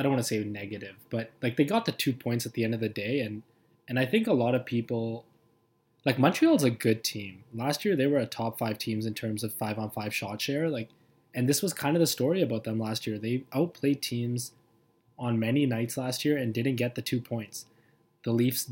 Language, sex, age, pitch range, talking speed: English, male, 20-39, 110-135 Hz, 245 wpm